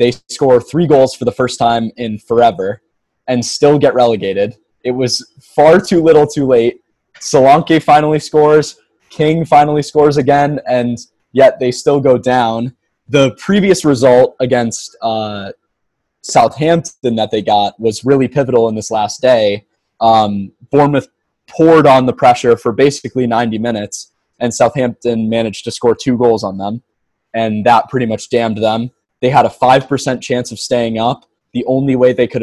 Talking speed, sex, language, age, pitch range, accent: 165 wpm, male, English, 20-39, 115-135 Hz, American